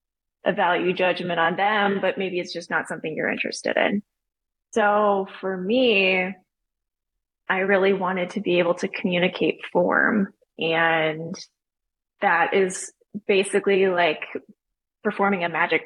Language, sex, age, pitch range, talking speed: English, female, 20-39, 175-200 Hz, 130 wpm